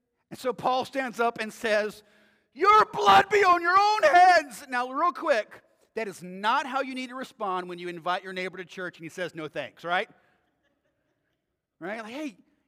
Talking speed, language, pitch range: 200 wpm, English, 195-270 Hz